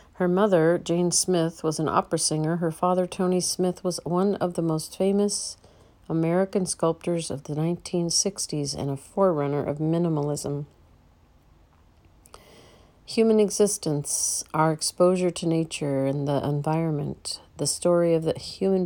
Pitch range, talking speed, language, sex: 145-180 Hz, 135 wpm, English, female